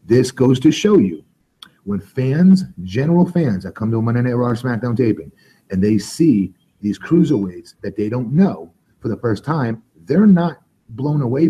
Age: 30-49